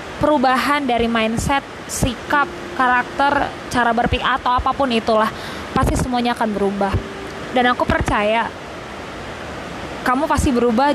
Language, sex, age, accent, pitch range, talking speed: Indonesian, female, 20-39, native, 220-275 Hz, 110 wpm